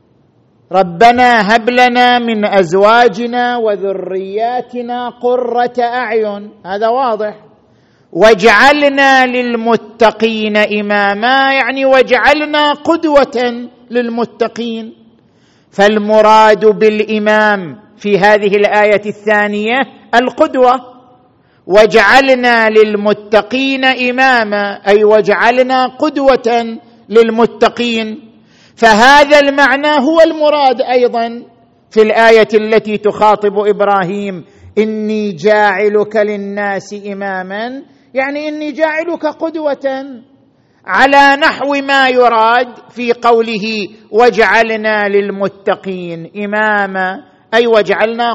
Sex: male